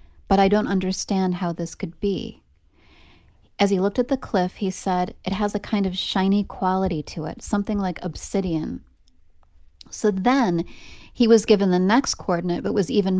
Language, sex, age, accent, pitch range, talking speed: English, female, 30-49, American, 165-200 Hz, 175 wpm